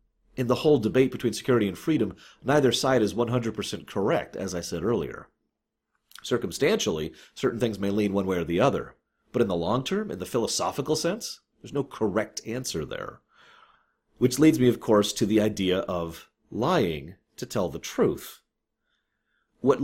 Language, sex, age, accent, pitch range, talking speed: English, male, 40-59, American, 105-155 Hz, 170 wpm